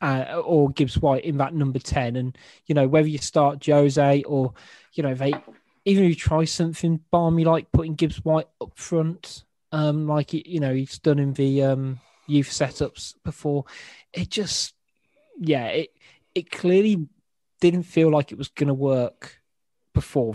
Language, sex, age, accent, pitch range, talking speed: English, male, 20-39, British, 140-170 Hz, 175 wpm